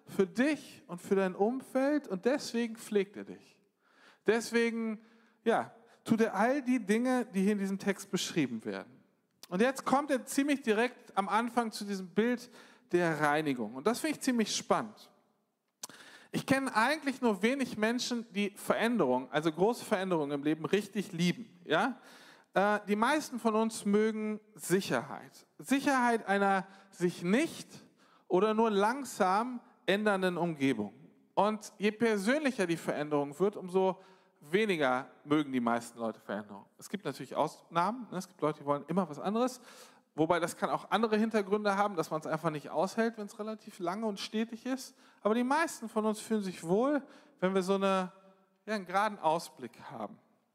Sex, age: male, 40-59